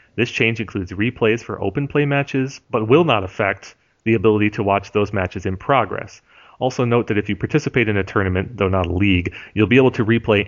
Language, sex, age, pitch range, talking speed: English, male, 30-49, 95-120 Hz, 220 wpm